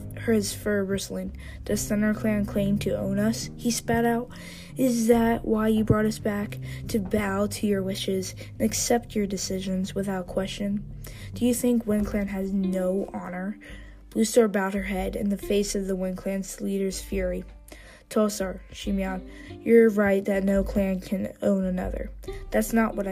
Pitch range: 185-220 Hz